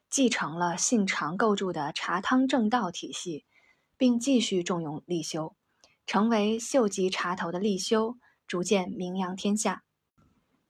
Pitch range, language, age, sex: 180-245 Hz, Chinese, 20-39, female